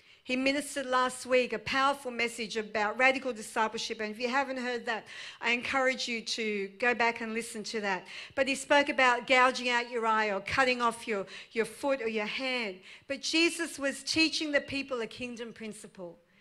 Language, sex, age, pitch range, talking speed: English, female, 50-69, 220-275 Hz, 190 wpm